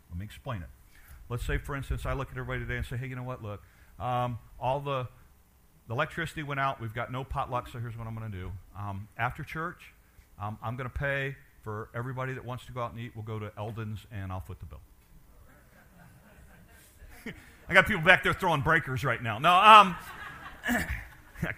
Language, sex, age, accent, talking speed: English, male, 50-69, American, 210 wpm